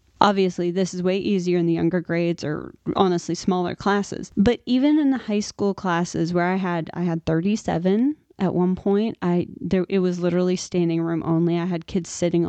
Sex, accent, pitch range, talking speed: female, American, 175-210 Hz, 195 wpm